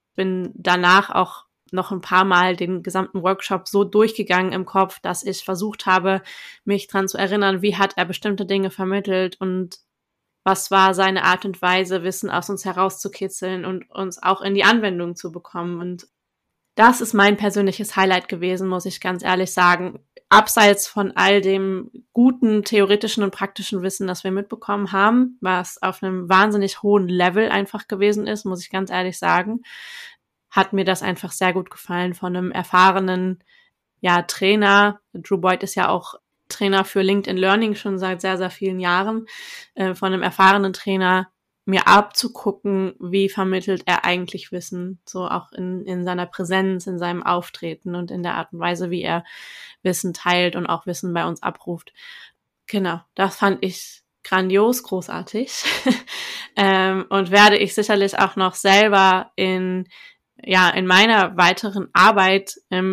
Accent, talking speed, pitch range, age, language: German, 160 wpm, 185-205 Hz, 20-39, German